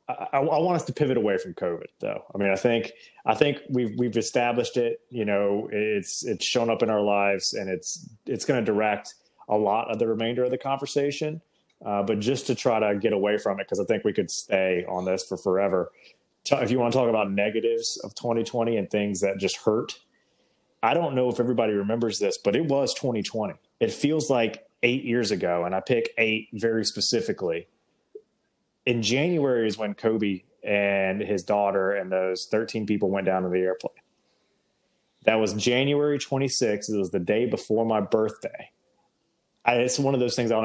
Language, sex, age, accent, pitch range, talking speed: English, male, 30-49, American, 100-130 Hz, 200 wpm